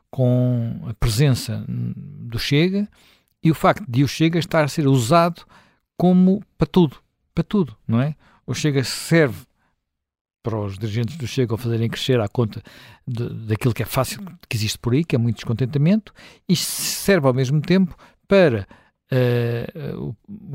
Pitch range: 120-160 Hz